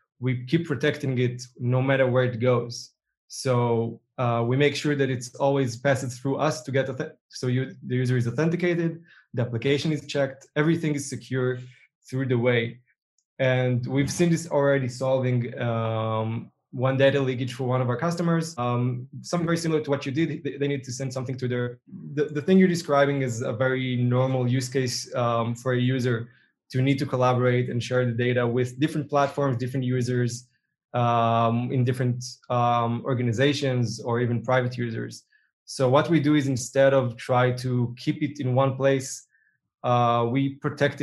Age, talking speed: 20-39, 180 wpm